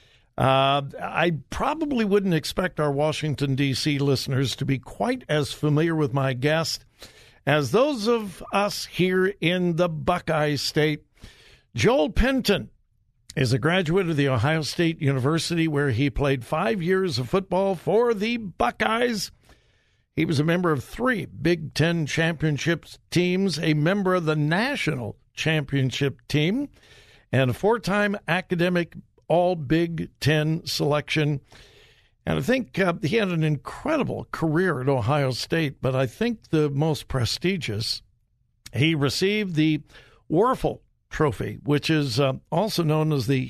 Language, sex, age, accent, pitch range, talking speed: English, male, 60-79, American, 135-185 Hz, 140 wpm